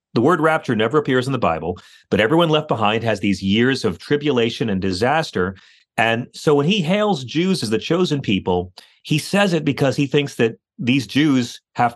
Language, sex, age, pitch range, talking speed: English, male, 40-59, 110-160 Hz, 195 wpm